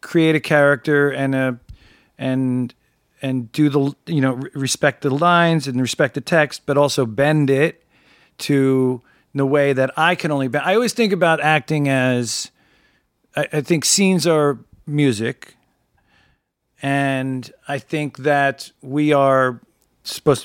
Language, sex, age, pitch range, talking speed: English, male, 40-59, 125-145 Hz, 145 wpm